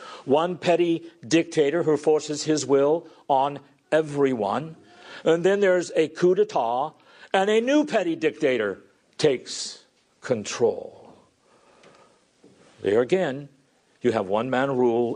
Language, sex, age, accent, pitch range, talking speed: English, male, 50-69, American, 135-220 Hz, 110 wpm